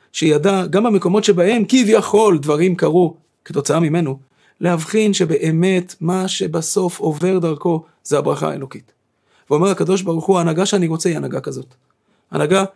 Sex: male